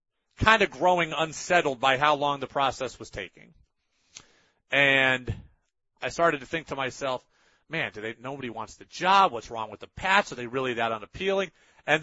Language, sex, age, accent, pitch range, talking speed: English, male, 30-49, American, 130-195 Hz, 180 wpm